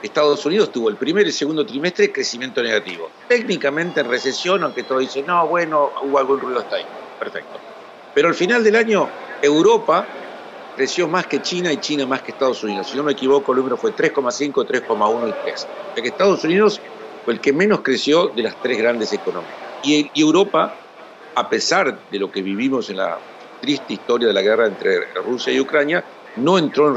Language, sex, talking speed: Spanish, male, 195 wpm